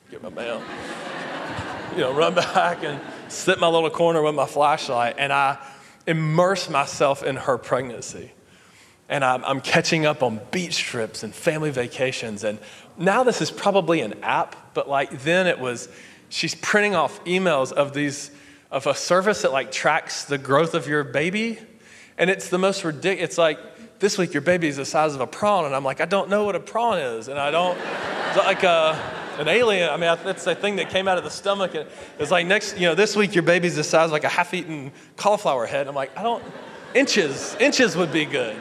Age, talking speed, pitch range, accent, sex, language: 30-49, 210 wpm, 135-185 Hz, American, male, English